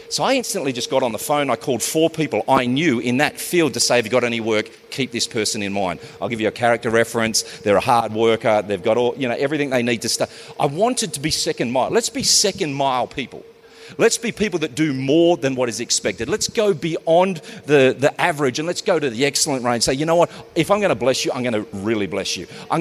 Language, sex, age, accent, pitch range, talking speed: English, male, 40-59, Australian, 125-190 Hz, 265 wpm